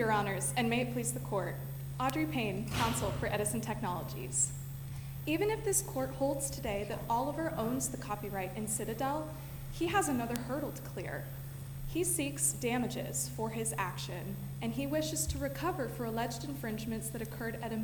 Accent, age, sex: American, 20-39, female